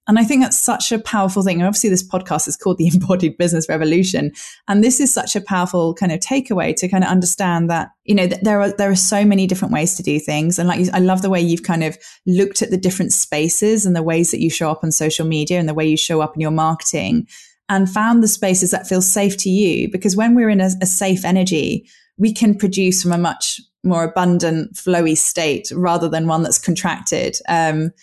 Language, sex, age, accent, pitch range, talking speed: English, female, 20-39, British, 165-200 Hz, 240 wpm